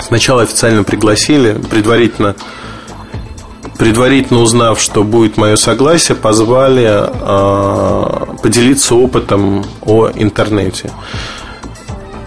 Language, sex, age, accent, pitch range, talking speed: Russian, male, 20-39, native, 105-125 Hz, 80 wpm